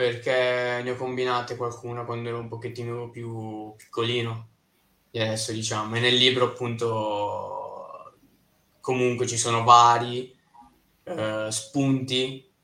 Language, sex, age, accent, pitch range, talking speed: Italian, male, 20-39, native, 110-125 Hz, 115 wpm